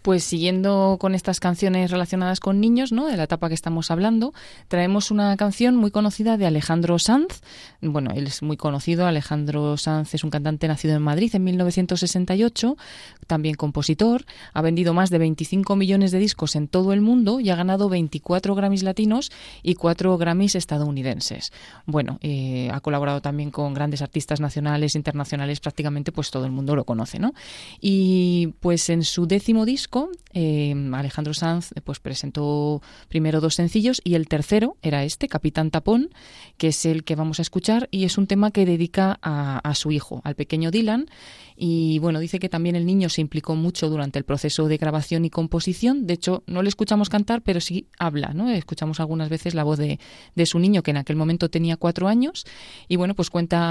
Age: 20-39